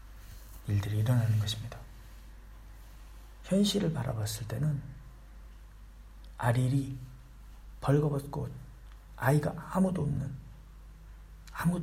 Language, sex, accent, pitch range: Korean, male, native, 100-155 Hz